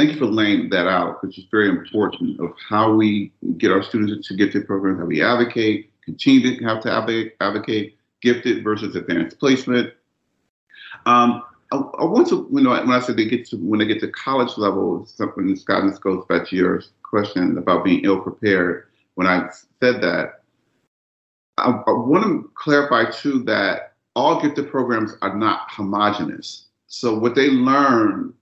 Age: 40-59